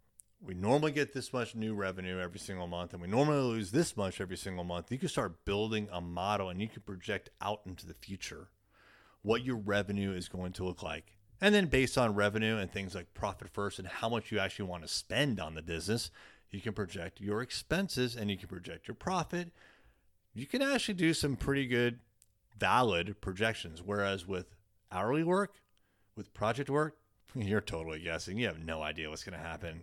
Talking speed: 200 wpm